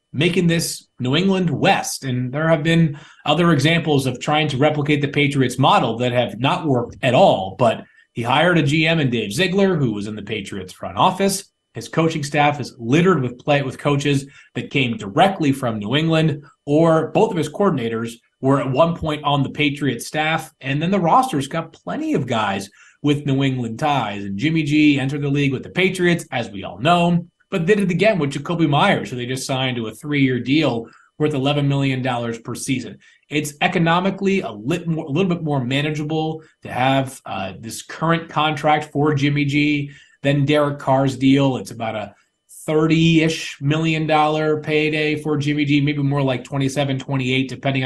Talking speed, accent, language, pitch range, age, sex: 190 wpm, American, English, 135-160 Hz, 30-49, male